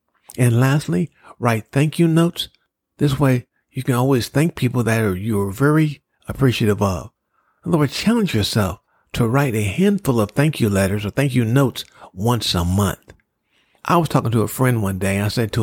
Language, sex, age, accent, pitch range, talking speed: English, male, 50-69, American, 105-140 Hz, 180 wpm